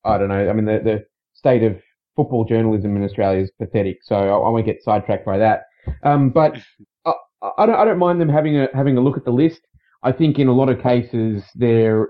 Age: 20-39